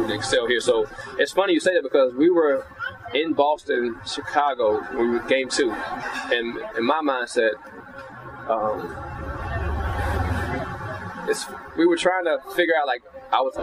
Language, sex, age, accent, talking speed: English, male, 20-39, American, 145 wpm